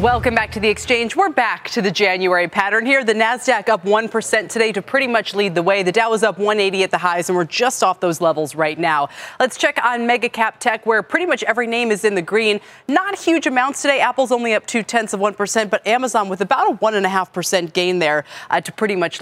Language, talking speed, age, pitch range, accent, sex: English, 235 wpm, 30-49, 185-240 Hz, American, female